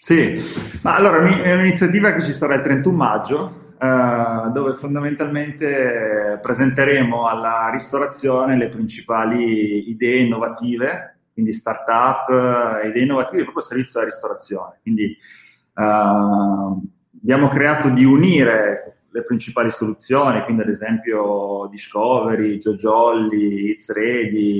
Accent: native